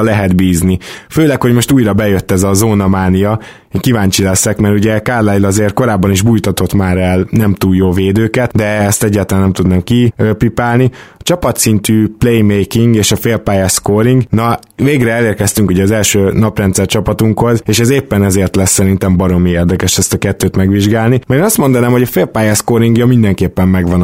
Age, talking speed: 20-39, 175 wpm